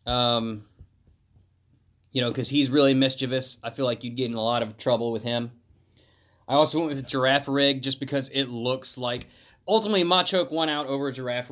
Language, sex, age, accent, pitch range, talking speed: English, male, 20-39, American, 110-140 Hz, 190 wpm